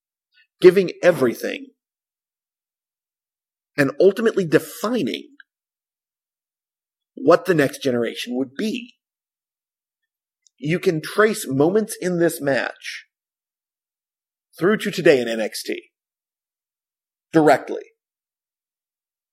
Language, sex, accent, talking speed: English, male, American, 75 wpm